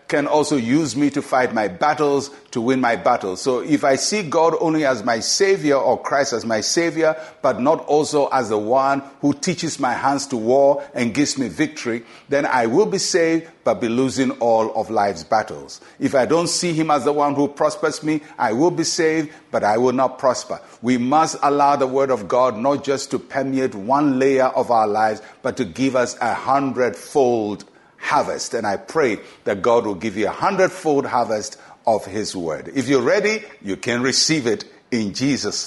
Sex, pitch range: male, 120-155 Hz